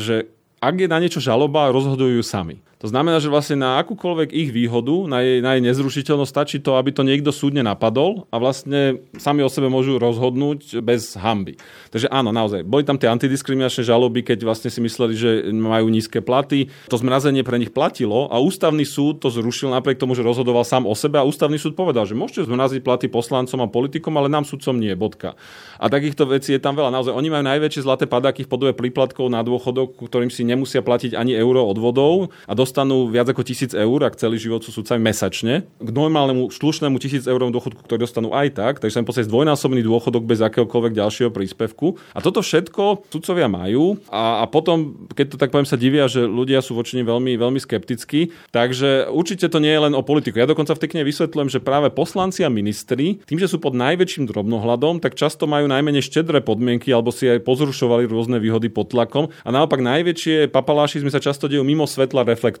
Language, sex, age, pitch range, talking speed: Slovak, male, 30-49, 120-145 Hz, 195 wpm